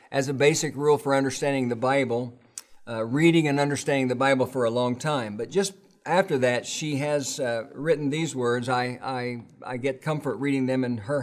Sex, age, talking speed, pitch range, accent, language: male, 50-69, 200 wpm, 125-150 Hz, American, English